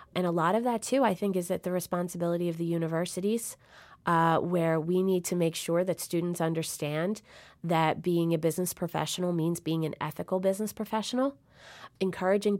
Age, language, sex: 30-49, English, female